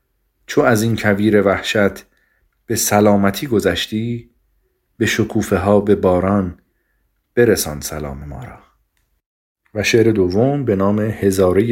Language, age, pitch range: Persian, 40-59, 95-110 Hz